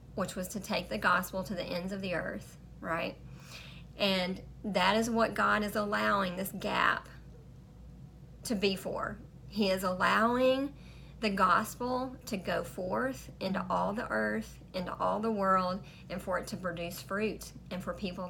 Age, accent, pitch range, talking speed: 40-59, American, 180-215 Hz, 165 wpm